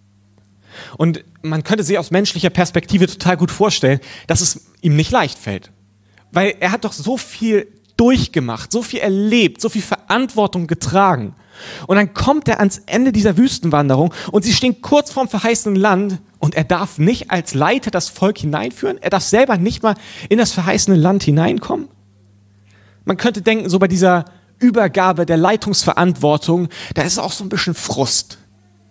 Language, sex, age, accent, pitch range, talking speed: German, male, 30-49, German, 125-190 Hz, 165 wpm